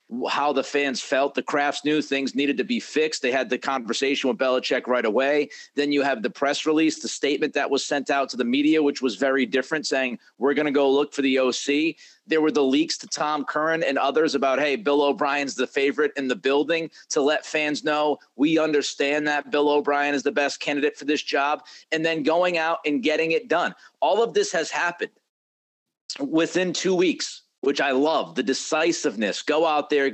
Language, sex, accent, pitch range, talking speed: English, male, American, 130-155 Hz, 210 wpm